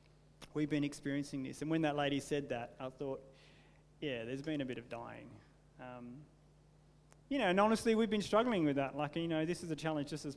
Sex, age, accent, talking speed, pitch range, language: male, 30-49, Australian, 220 wpm, 140-165 Hz, English